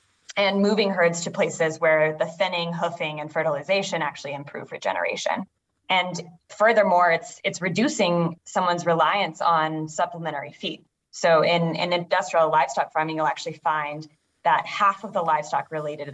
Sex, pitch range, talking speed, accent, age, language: female, 155-185 Hz, 145 wpm, American, 20-39, English